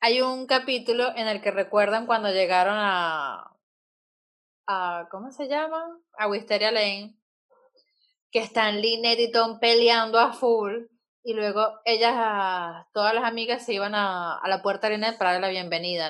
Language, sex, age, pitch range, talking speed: Spanish, female, 20-39, 215-290 Hz, 160 wpm